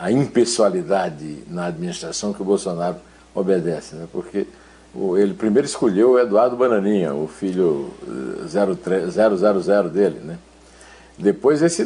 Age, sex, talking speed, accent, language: 60-79, male, 115 wpm, Brazilian, Portuguese